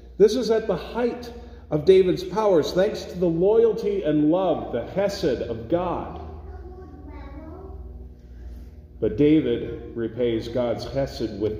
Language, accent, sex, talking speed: English, American, male, 125 wpm